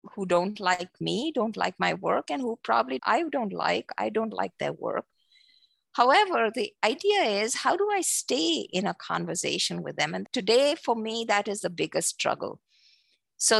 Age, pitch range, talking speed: 50-69, 185-250 Hz, 185 wpm